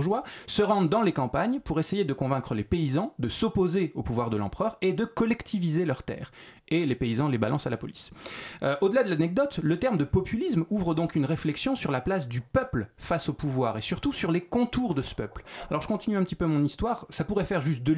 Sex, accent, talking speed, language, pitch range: male, French, 235 wpm, French, 135-200 Hz